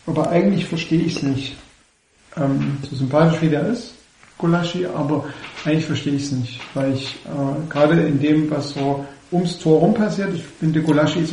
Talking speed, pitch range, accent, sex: 185 wpm, 140-170 Hz, German, male